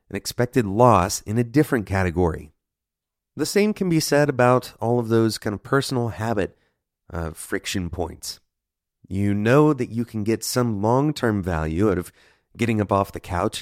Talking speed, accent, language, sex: 170 wpm, American, English, male